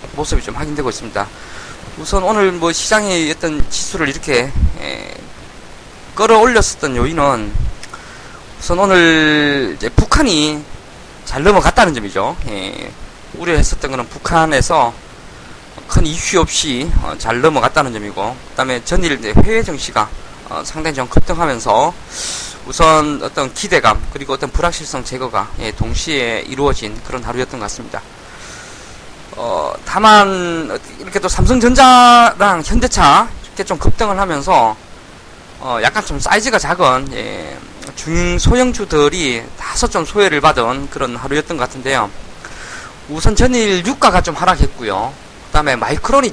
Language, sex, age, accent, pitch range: Korean, male, 20-39, native, 130-200 Hz